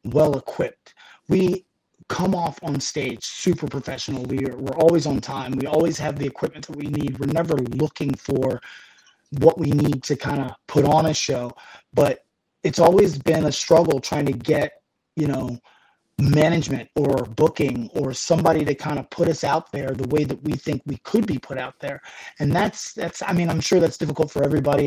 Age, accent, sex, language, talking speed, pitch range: 30-49, American, male, English, 195 wpm, 135-155 Hz